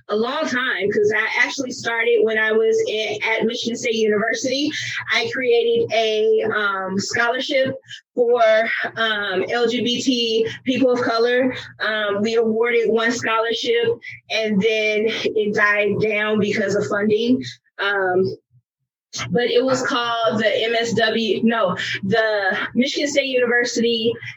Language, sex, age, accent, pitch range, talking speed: English, female, 20-39, American, 210-240 Hz, 125 wpm